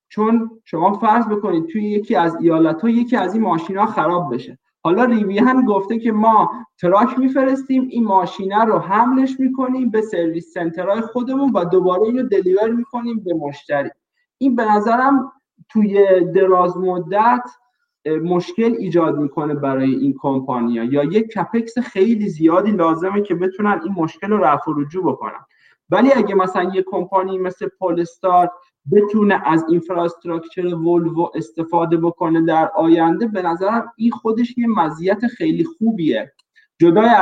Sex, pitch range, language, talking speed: male, 160-220 Hz, Persian, 140 wpm